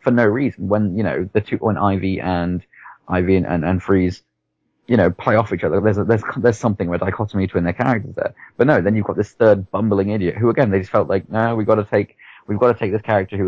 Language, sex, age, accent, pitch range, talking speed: English, male, 30-49, British, 90-105 Hz, 270 wpm